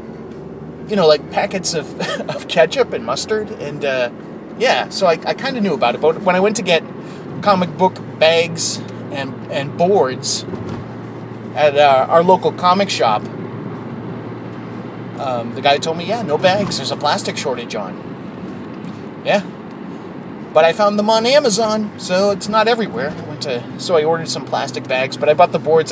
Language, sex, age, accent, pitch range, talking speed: English, male, 30-49, American, 130-180 Hz, 175 wpm